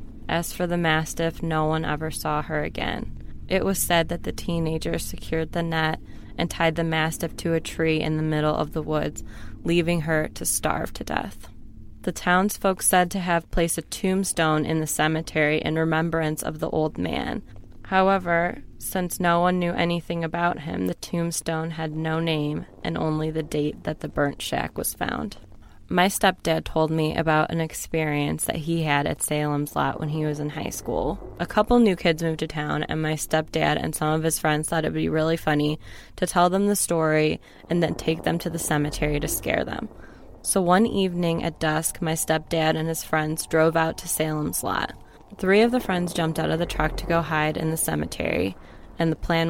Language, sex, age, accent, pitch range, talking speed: English, female, 20-39, American, 155-170 Hz, 200 wpm